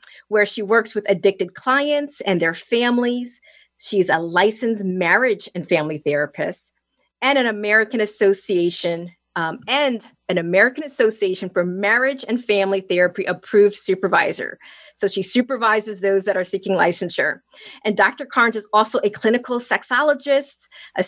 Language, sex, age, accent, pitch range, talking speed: English, female, 40-59, American, 195-245 Hz, 140 wpm